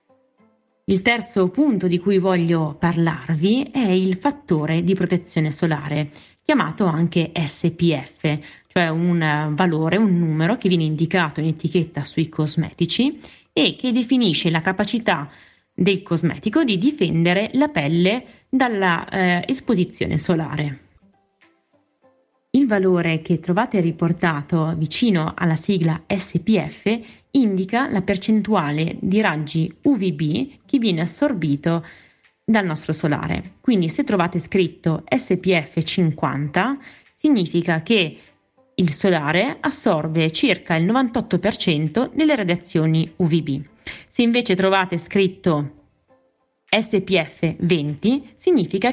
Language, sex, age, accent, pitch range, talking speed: Italian, female, 20-39, native, 160-220 Hz, 110 wpm